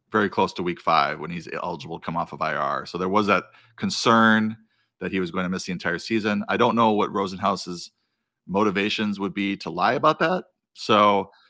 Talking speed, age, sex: 210 wpm, 40-59, male